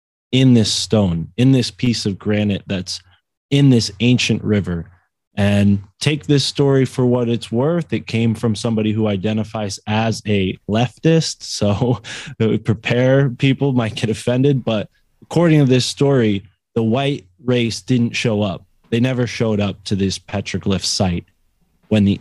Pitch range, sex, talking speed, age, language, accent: 95-120 Hz, male, 155 wpm, 20-39, English, American